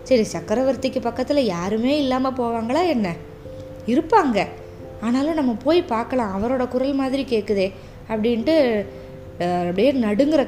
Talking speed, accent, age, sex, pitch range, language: 110 wpm, native, 20-39, female, 220-300 Hz, Tamil